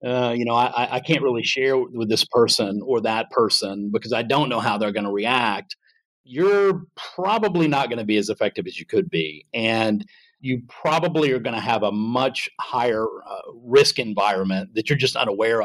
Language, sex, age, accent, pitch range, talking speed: English, male, 40-59, American, 110-150 Hz, 220 wpm